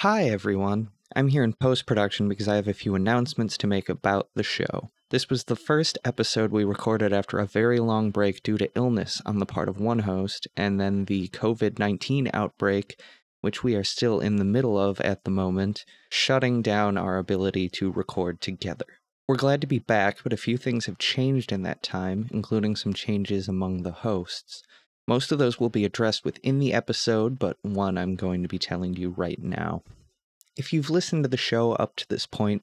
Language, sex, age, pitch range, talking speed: English, male, 20-39, 100-120 Hz, 200 wpm